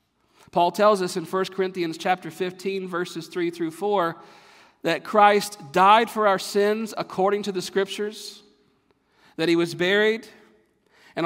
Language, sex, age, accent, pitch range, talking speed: English, male, 50-69, American, 165-215 Hz, 145 wpm